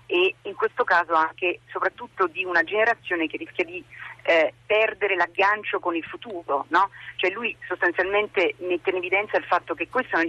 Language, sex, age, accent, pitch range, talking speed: Italian, female, 40-59, native, 170-220 Hz, 180 wpm